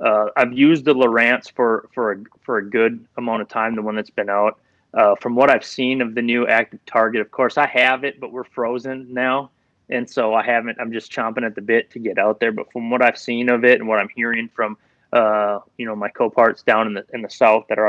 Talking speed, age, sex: 260 wpm, 30-49, male